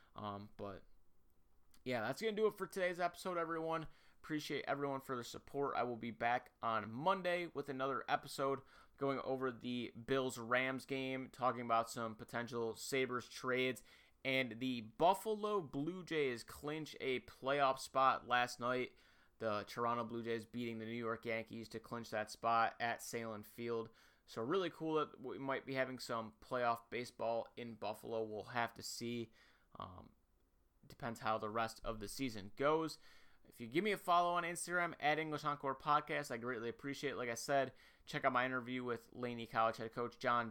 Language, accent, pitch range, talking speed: English, American, 115-140 Hz, 175 wpm